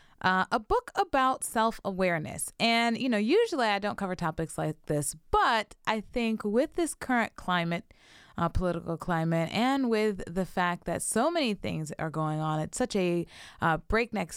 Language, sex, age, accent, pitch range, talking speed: English, female, 20-39, American, 165-215 Hz, 170 wpm